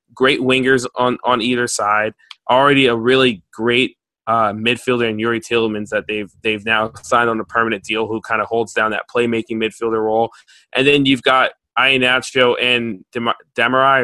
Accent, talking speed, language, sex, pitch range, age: American, 170 wpm, English, male, 115-130 Hz, 20-39